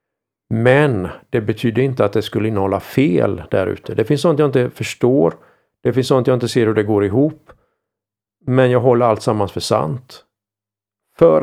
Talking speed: 185 wpm